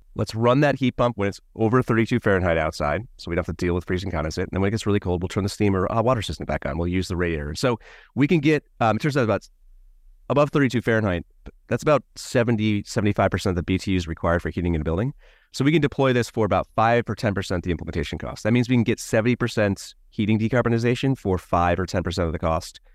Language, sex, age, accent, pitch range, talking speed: English, male, 30-49, American, 85-110 Hz, 250 wpm